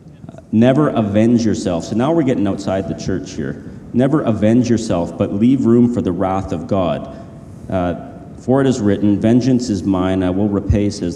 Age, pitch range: 40-59, 95-115 Hz